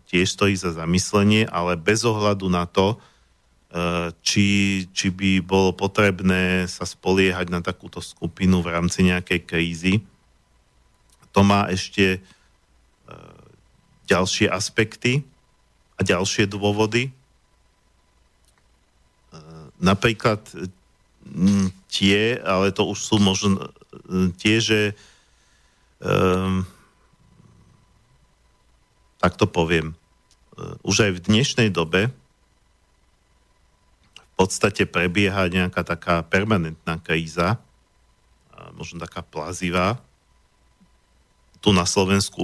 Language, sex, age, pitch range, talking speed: Slovak, male, 50-69, 85-105 Hz, 90 wpm